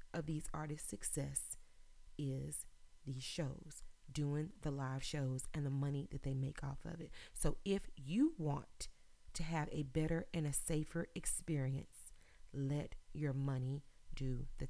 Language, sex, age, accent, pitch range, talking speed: English, female, 30-49, American, 140-170 Hz, 145 wpm